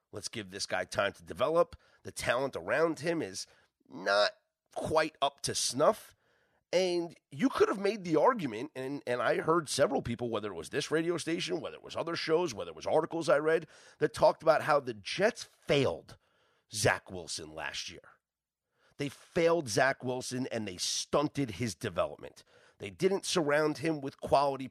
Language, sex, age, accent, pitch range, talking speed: English, male, 30-49, American, 130-165 Hz, 175 wpm